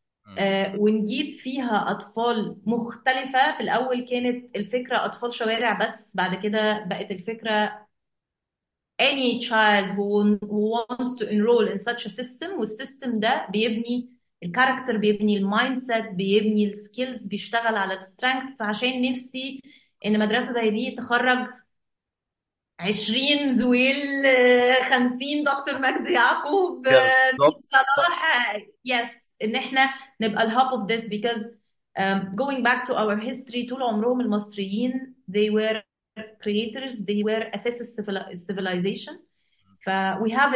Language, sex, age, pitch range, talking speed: English, female, 20-39, 210-255 Hz, 100 wpm